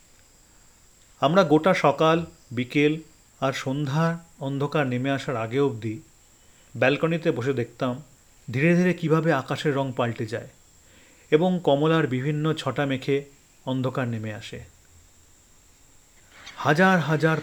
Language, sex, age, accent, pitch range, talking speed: Bengali, male, 40-59, native, 115-150 Hz, 105 wpm